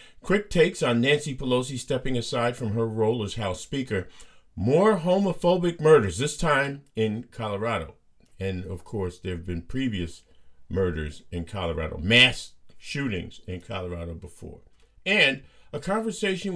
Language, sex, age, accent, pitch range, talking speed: English, male, 50-69, American, 100-150 Hz, 140 wpm